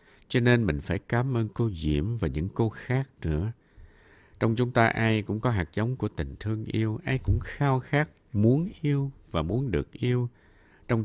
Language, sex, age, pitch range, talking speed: Vietnamese, male, 60-79, 85-120 Hz, 195 wpm